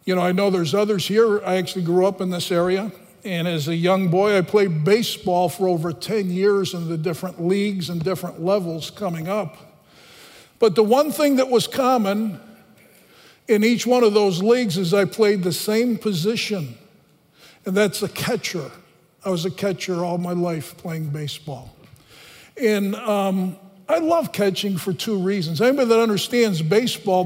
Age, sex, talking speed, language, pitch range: 50-69, male, 175 wpm, English, 185-235 Hz